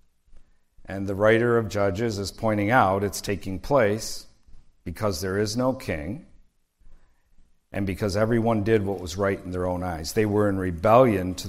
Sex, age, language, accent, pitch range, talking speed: male, 50-69, English, American, 90-115 Hz, 165 wpm